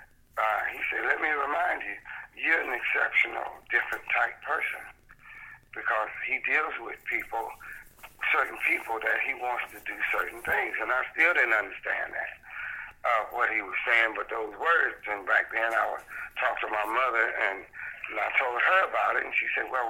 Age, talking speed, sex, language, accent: 60-79, 185 wpm, male, English, American